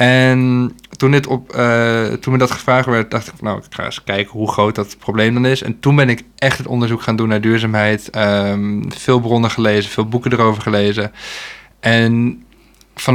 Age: 20-39